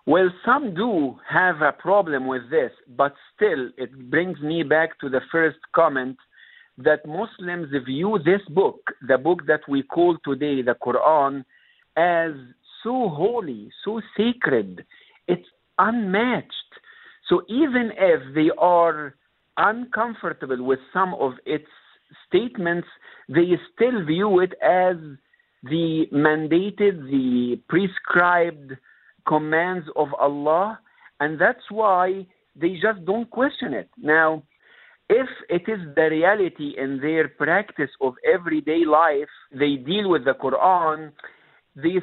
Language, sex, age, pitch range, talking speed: English, male, 50-69, 150-205 Hz, 125 wpm